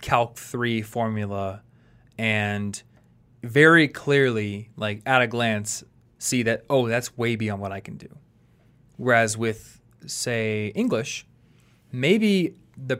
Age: 20-39